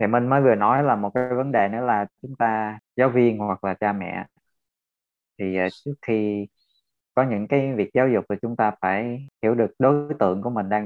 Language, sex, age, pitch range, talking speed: Vietnamese, male, 20-39, 100-130 Hz, 220 wpm